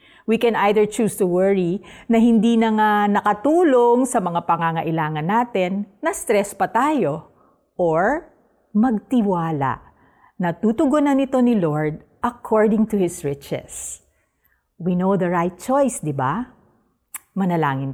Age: 50-69